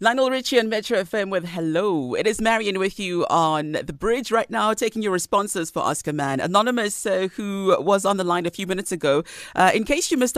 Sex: female